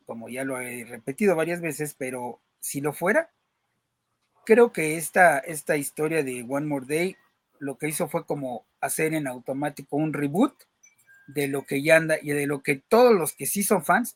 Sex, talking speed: male, 190 wpm